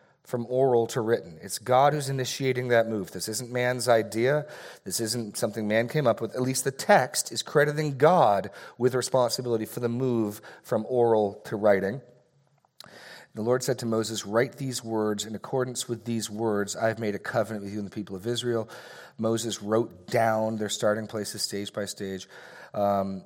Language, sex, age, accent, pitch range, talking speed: English, male, 40-59, American, 105-130 Hz, 185 wpm